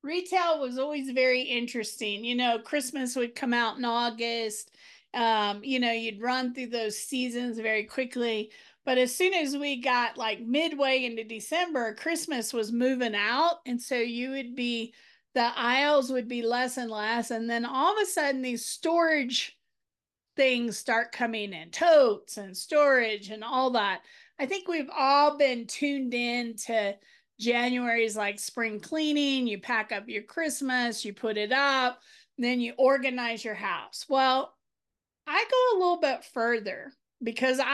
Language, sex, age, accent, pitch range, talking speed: English, female, 40-59, American, 230-290 Hz, 160 wpm